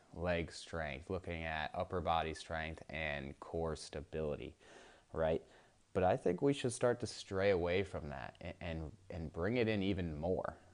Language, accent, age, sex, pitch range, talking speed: English, American, 20-39, male, 85-100 Hz, 160 wpm